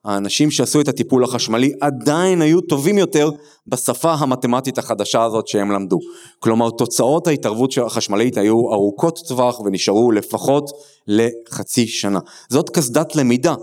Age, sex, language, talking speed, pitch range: 30-49, male, Hebrew, 130 wpm, 115-150 Hz